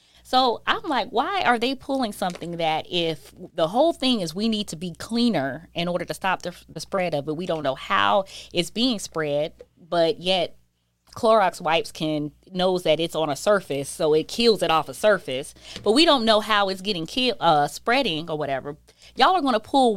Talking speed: 210 wpm